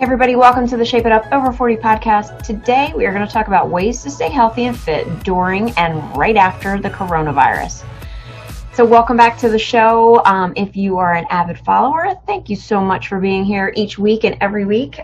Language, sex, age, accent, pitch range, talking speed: English, female, 30-49, American, 180-230 Hz, 215 wpm